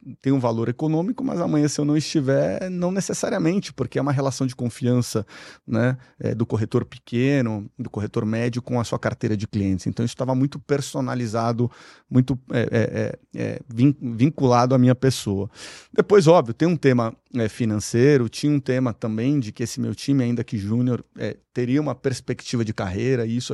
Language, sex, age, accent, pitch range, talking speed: Portuguese, male, 30-49, Brazilian, 115-135 Hz, 185 wpm